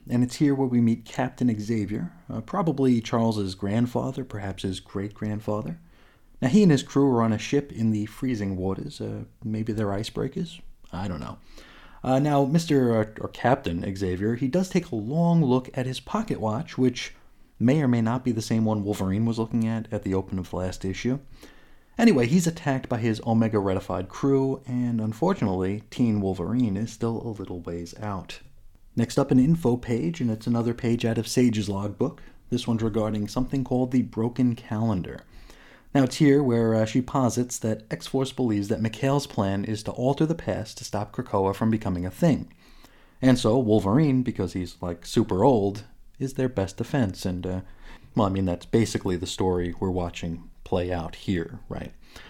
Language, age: English, 30-49